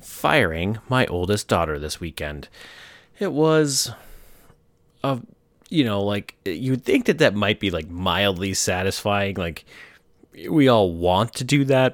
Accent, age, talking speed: American, 30-49, 140 wpm